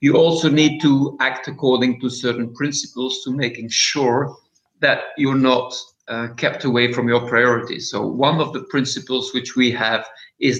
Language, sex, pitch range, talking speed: English, male, 120-140 Hz, 170 wpm